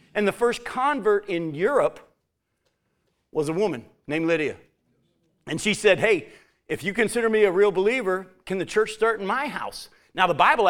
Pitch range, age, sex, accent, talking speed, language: 155-200 Hz, 50-69, male, American, 180 wpm, English